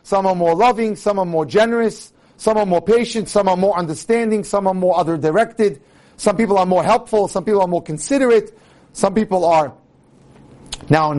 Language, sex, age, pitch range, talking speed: English, male, 40-59, 140-205 Hz, 190 wpm